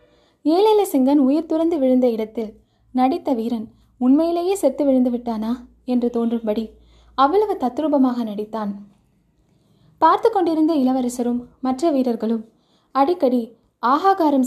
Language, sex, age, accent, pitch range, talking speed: Tamil, female, 20-39, native, 230-295 Hz, 95 wpm